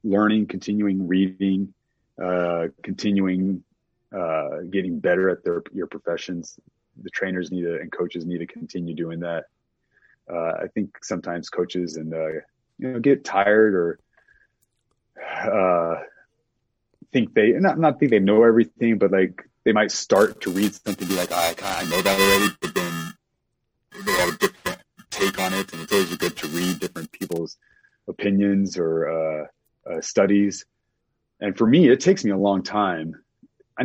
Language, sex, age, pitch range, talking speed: English, male, 30-49, 85-105 Hz, 165 wpm